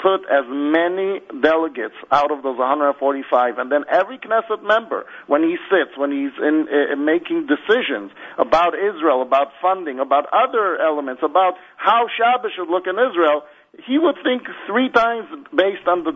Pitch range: 145-195 Hz